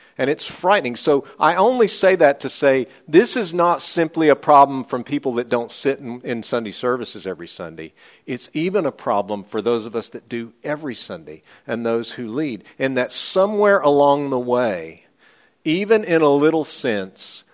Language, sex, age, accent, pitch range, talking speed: English, male, 50-69, American, 115-165 Hz, 185 wpm